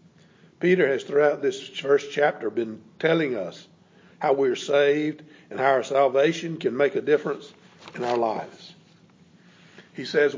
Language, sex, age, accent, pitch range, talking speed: English, male, 60-79, American, 140-175 Hz, 150 wpm